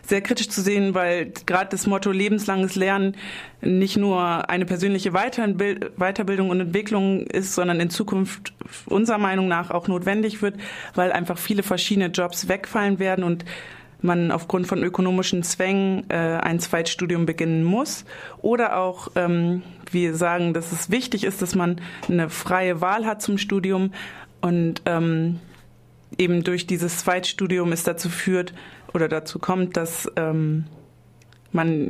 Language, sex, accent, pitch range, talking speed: German, female, German, 170-195 Hz, 140 wpm